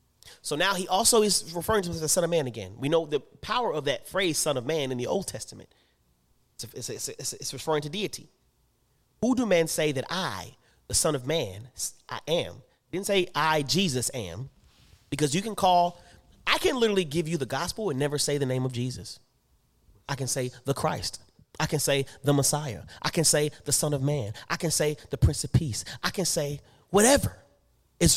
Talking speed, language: 210 wpm, English